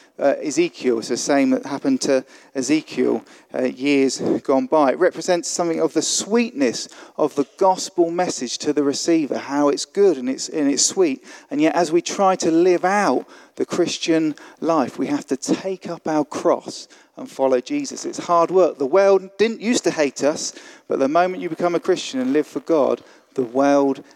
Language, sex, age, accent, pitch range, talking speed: English, male, 40-59, British, 150-215 Hz, 190 wpm